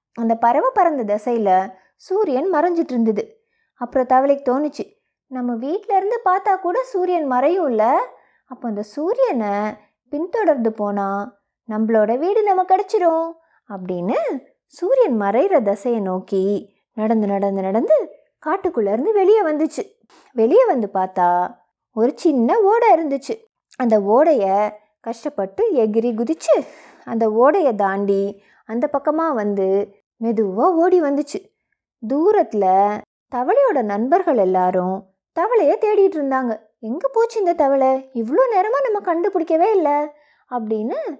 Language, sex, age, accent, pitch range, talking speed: Tamil, female, 20-39, native, 220-350 Hz, 110 wpm